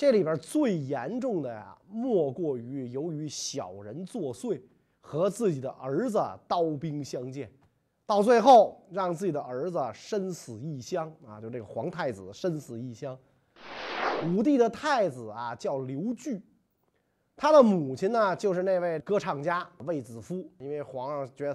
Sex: male